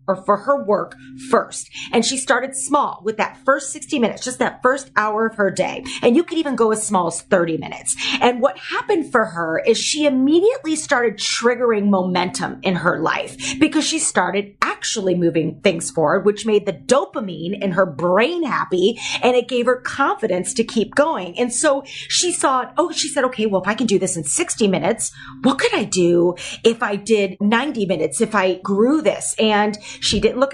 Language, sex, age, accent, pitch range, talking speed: English, female, 30-49, American, 190-255 Hz, 200 wpm